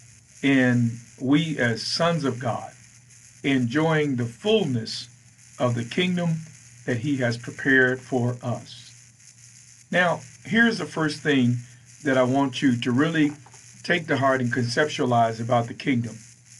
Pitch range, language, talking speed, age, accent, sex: 120-140 Hz, English, 135 wpm, 50-69, American, male